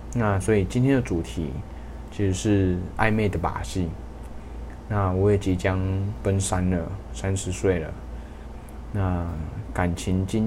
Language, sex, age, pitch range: Chinese, male, 20-39, 85-100 Hz